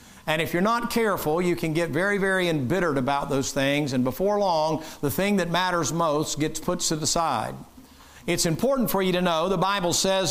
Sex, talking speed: male, 210 wpm